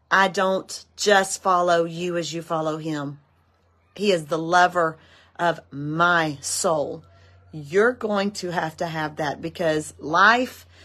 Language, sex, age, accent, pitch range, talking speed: English, female, 40-59, American, 140-190 Hz, 140 wpm